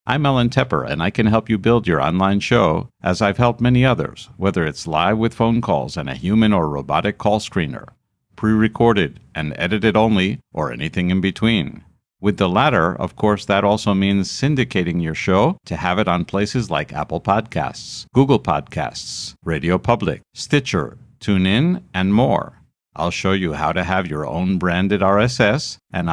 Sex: male